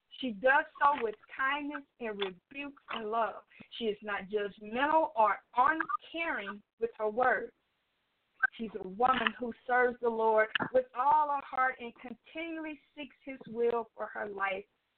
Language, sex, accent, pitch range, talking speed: English, female, American, 210-280 Hz, 150 wpm